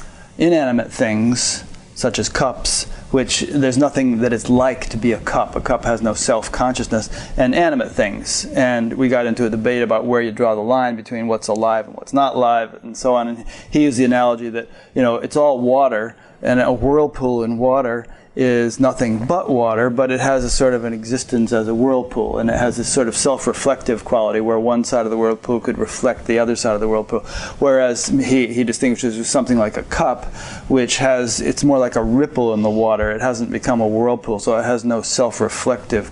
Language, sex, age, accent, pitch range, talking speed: English, male, 30-49, American, 115-135 Hz, 215 wpm